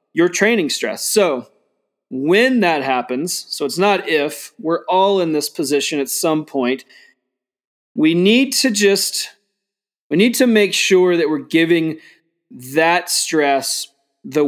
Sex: male